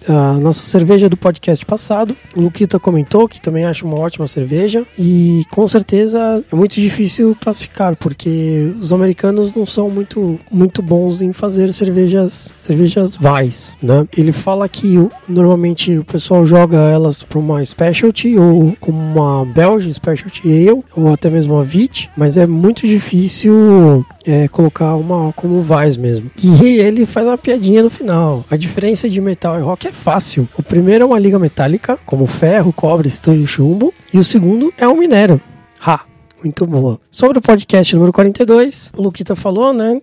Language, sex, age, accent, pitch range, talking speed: Portuguese, male, 20-39, Brazilian, 160-205 Hz, 170 wpm